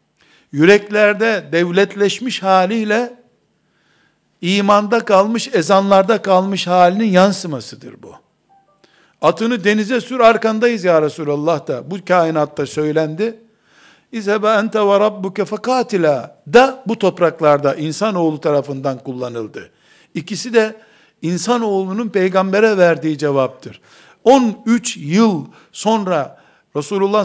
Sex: male